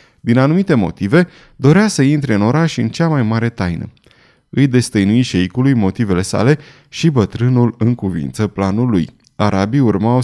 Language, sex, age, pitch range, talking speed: Romanian, male, 20-39, 100-140 Hz, 145 wpm